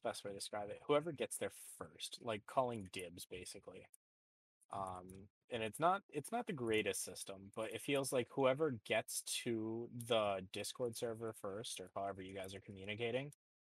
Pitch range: 95-120 Hz